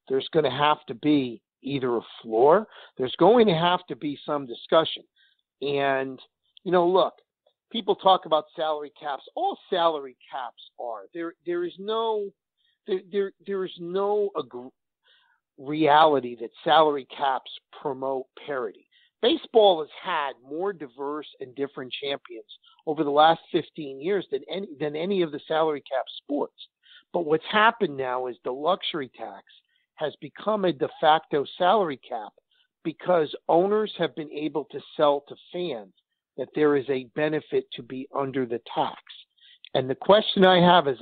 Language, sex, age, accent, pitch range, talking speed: English, male, 50-69, American, 140-205 Hz, 160 wpm